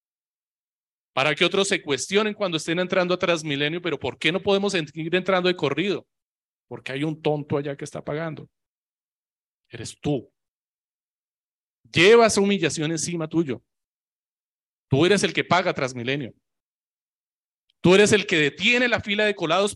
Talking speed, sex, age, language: 150 wpm, male, 30-49, Spanish